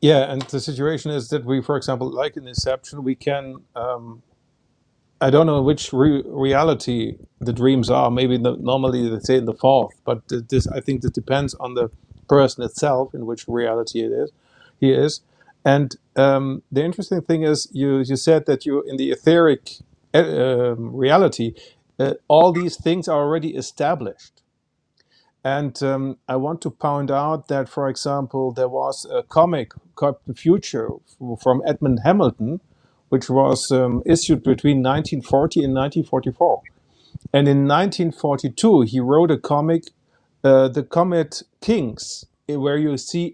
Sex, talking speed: male, 160 wpm